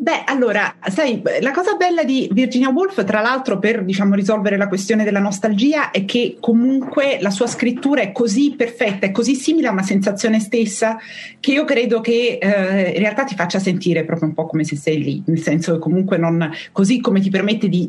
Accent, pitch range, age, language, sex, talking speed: native, 185-240 Hz, 30-49, Italian, female, 205 wpm